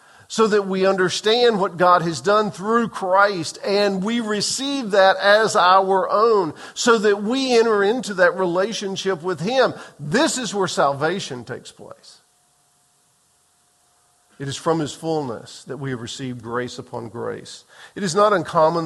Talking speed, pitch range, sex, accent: 155 wpm, 145-185 Hz, male, American